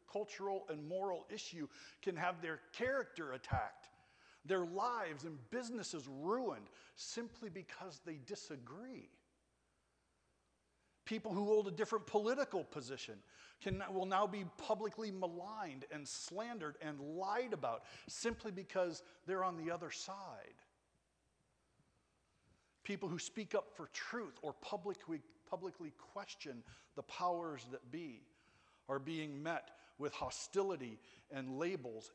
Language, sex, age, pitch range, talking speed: English, male, 50-69, 135-200 Hz, 120 wpm